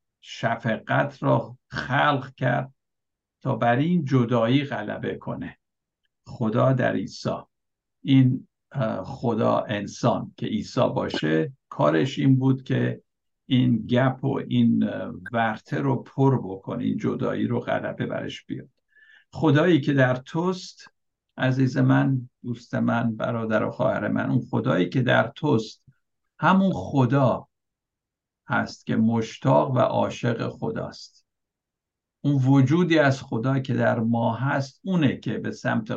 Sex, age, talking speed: male, 60-79, 125 wpm